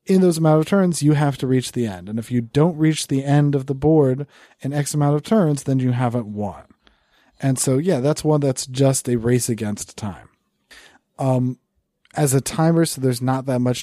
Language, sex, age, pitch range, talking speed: English, male, 30-49, 115-140 Hz, 215 wpm